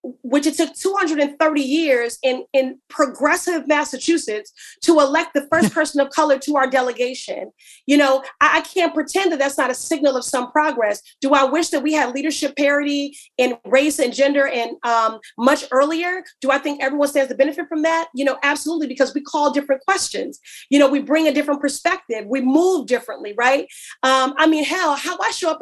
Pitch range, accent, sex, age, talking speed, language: 260-315 Hz, American, female, 30-49, 200 wpm, English